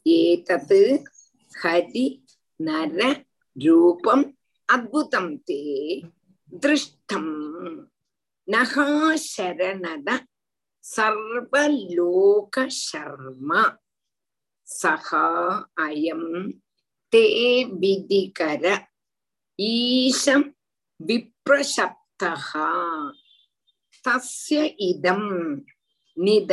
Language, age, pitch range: Tamil, 50-69, 175-285 Hz